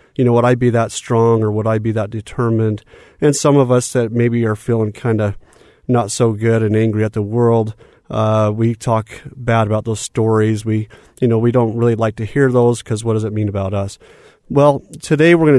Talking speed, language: 225 wpm, English